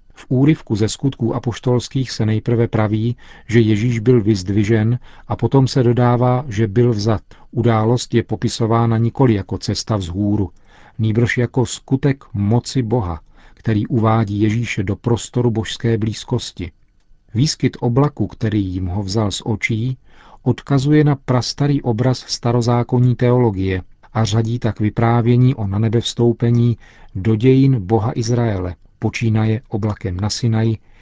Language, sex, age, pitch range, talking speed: Czech, male, 40-59, 110-125 Hz, 130 wpm